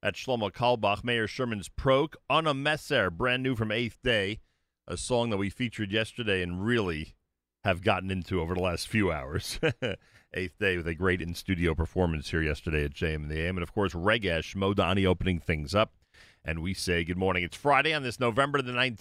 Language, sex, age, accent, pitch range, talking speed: English, male, 40-59, American, 85-120 Hz, 190 wpm